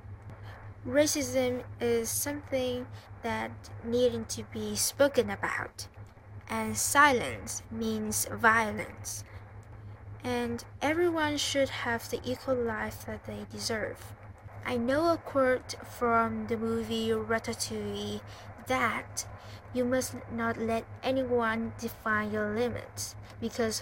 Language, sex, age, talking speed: English, female, 10-29, 105 wpm